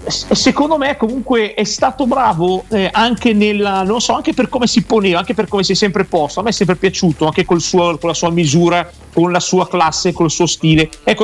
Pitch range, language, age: 160-220 Hz, Italian, 40-59